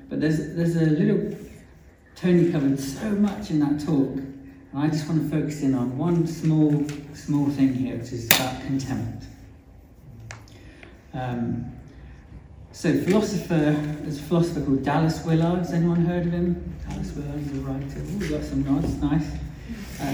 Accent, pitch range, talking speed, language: British, 125-155 Hz, 160 wpm, English